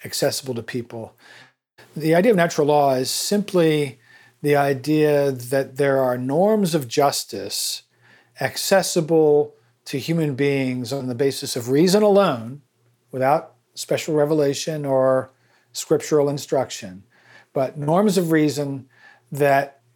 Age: 40-59